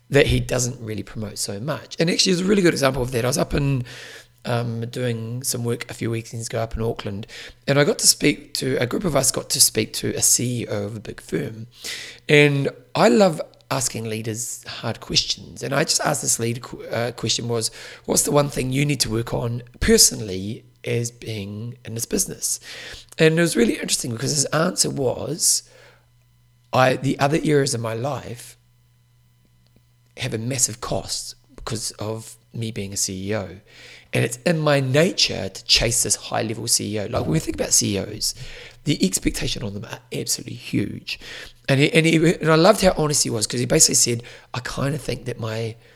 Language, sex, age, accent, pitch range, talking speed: English, male, 30-49, British, 115-140 Hz, 200 wpm